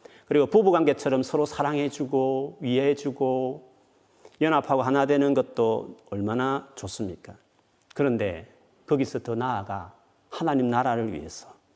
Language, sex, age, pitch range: Korean, male, 40-59, 110-150 Hz